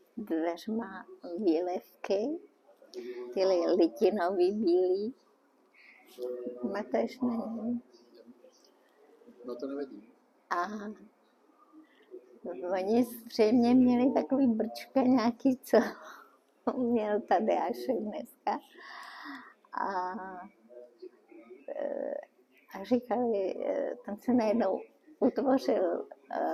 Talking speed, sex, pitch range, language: 60 wpm, male, 190-285 Hz, Czech